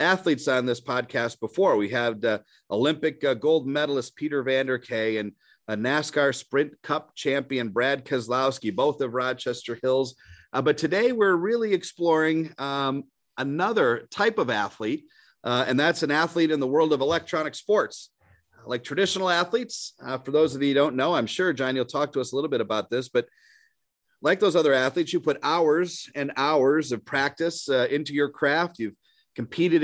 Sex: male